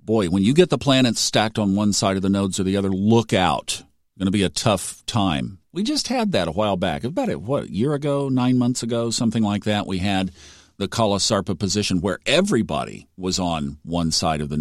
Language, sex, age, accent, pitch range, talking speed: English, male, 50-69, American, 95-115 Hz, 230 wpm